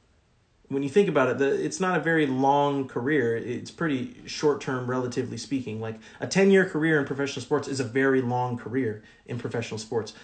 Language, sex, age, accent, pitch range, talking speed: English, male, 30-49, American, 120-140 Hz, 200 wpm